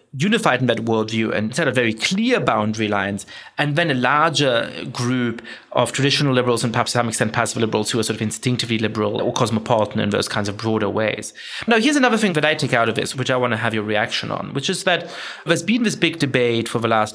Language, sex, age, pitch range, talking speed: English, male, 30-49, 110-160 Hz, 240 wpm